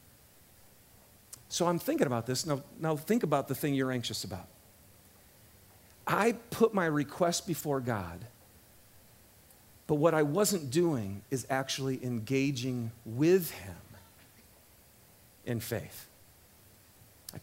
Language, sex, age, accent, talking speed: English, male, 40-59, American, 115 wpm